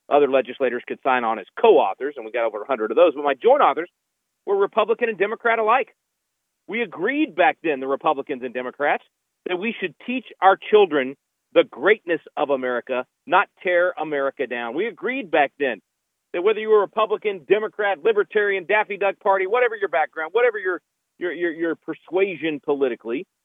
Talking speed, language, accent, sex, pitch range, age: 175 wpm, English, American, male, 150-225 Hz, 40-59